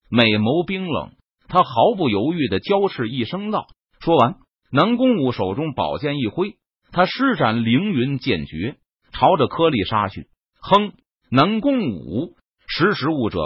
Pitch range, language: 120-200 Hz, Chinese